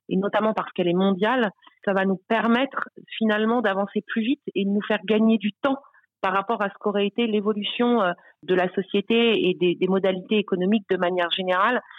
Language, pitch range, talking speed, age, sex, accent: French, 185-220 Hz, 190 wpm, 40-59, female, French